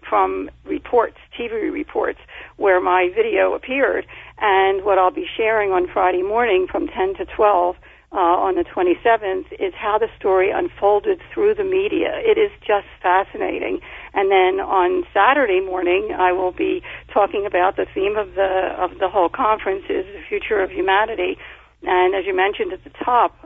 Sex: female